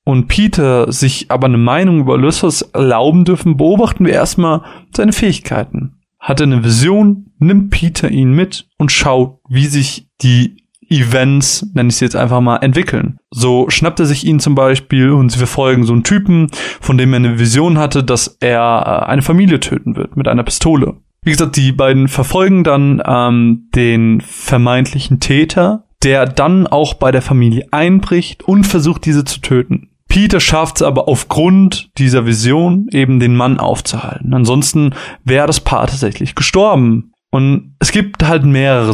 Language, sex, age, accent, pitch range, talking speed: German, male, 20-39, German, 125-170 Hz, 165 wpm